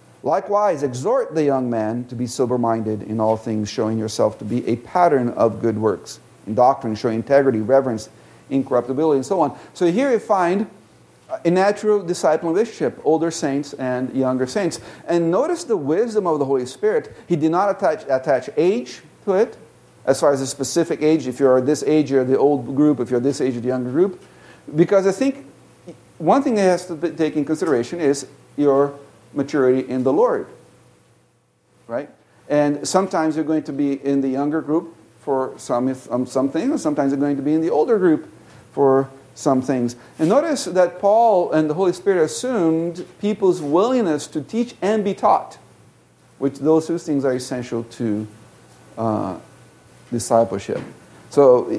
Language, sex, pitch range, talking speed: English, male, 130-175 Hz, 175 wpm